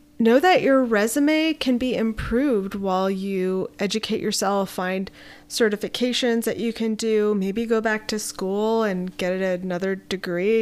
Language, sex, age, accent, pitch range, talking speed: English, female, 20-39, American, 190-230 Hz, 145 wpm